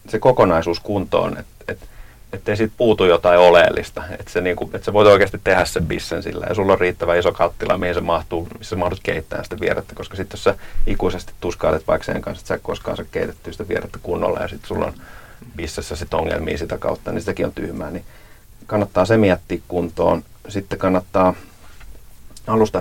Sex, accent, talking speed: male, native, 195 wpm